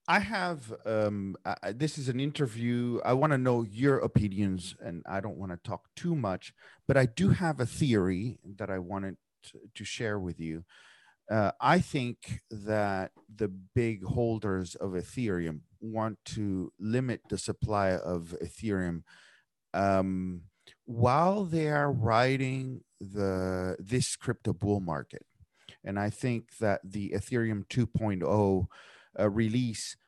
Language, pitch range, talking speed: English, 95-125 Hz, 135 wpm